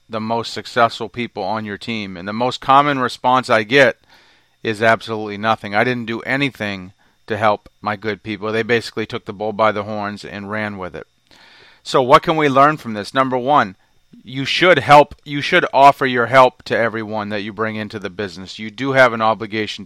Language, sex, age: English, male, 40-59